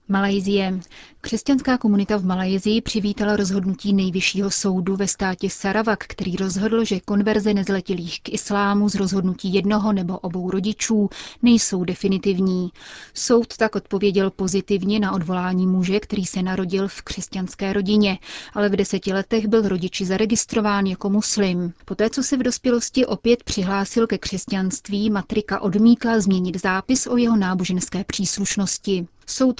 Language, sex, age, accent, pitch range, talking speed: Czech, female, 30-49, native, 190-210 Hz, 135 wpm